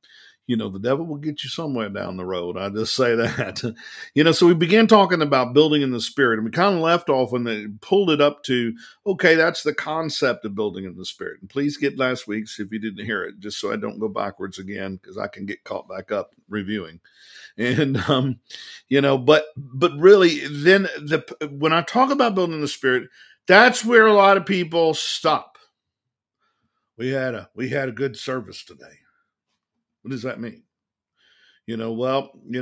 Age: 50-69